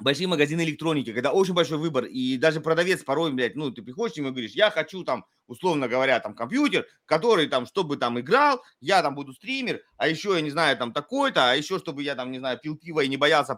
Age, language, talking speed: 30-49, Russian, 230 wpm